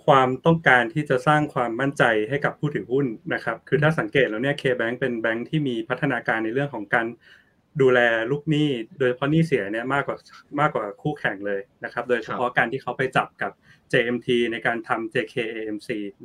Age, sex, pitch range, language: 20-39, male, 120-145 Hz, Thai